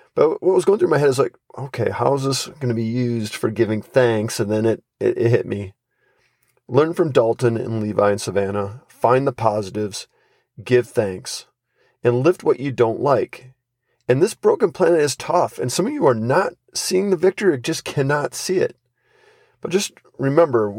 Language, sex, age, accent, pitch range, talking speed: English, male, 40-59, American, 115-165 Hz, 195 wpm